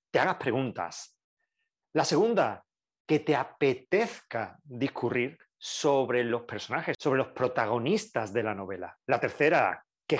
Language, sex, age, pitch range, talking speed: Spanish, male, 30-49, 130-195 Hz, 120 wpm